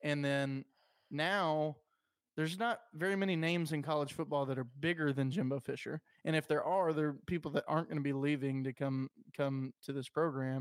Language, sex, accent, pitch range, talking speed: English, male, American, 140-160 Hz, 205 wpm